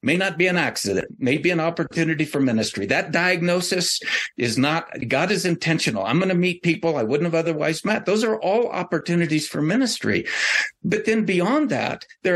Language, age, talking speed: English, 60-79, 190 wpm